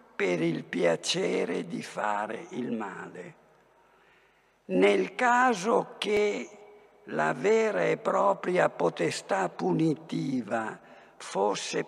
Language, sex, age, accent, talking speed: Italian, male, 60-79, native, 85 wpm